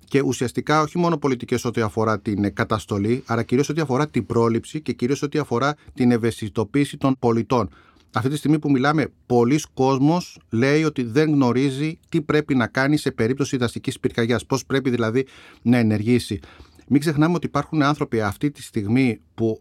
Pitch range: 115-150 Hz